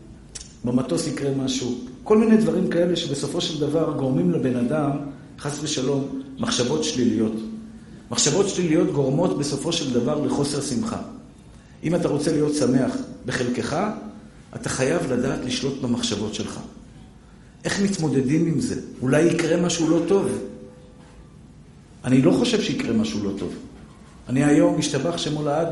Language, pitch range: Hebrew, 135-185 Hz